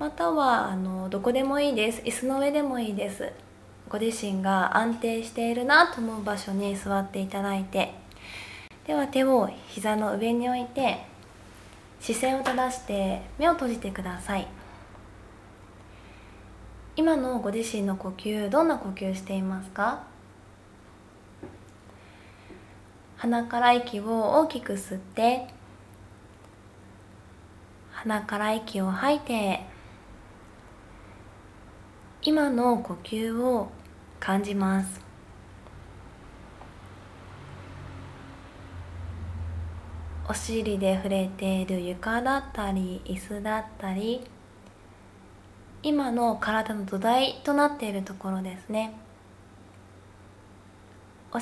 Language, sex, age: Japanese, female, 20-39